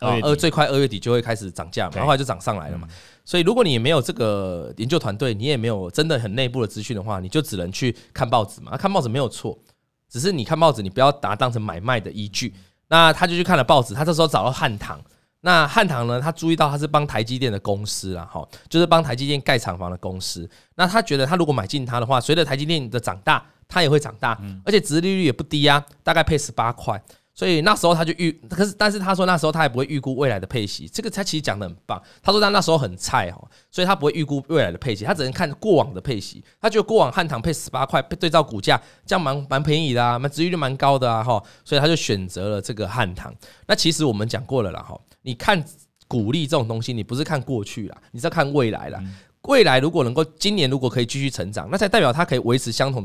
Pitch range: 110-160 Hz